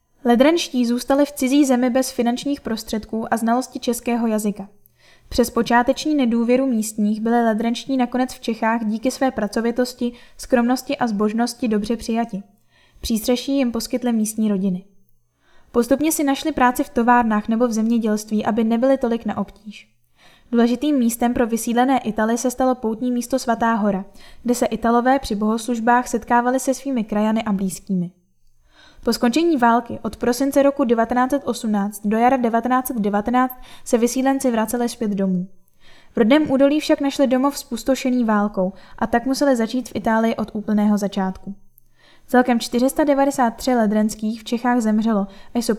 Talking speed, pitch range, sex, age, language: 145 wpm, 215-255 Hz, female, 10-29, Czech